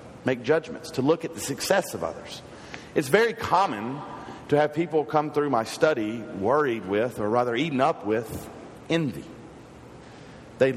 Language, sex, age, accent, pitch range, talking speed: English, male, 50-69, American, 115-145 Hz, 155 wpm